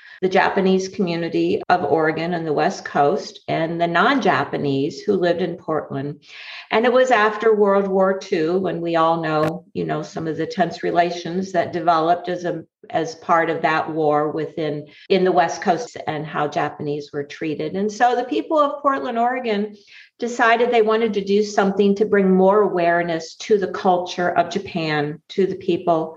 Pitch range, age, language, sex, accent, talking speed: 165-205 Hz, 50-69, English, female, American, 180 wpm